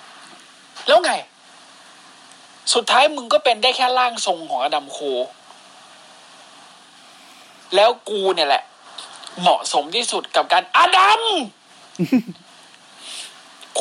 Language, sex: Thai, male